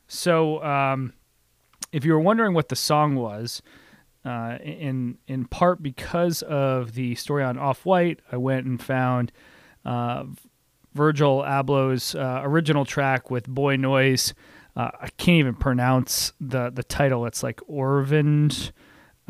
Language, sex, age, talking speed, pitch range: English, male, 30-49, 135 wpm, 125-145 Hz